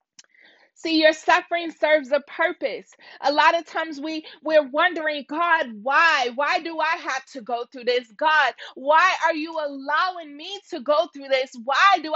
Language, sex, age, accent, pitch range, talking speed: English, female, 30-49, American, 300-355 Hz, 170 wpm